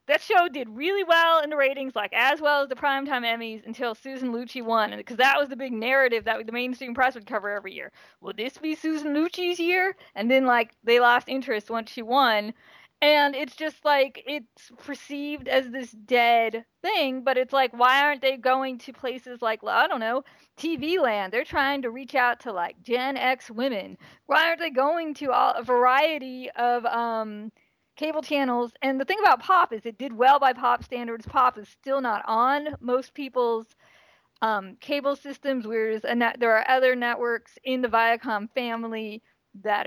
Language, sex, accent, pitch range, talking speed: English, female, American, 230-280 Hz, 190 wpm